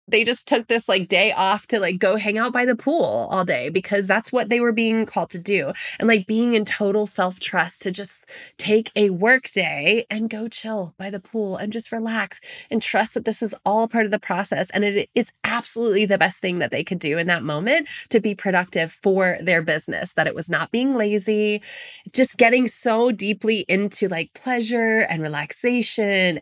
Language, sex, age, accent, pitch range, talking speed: English, female, 20-39, American, 180-225 Hz, 210 wpm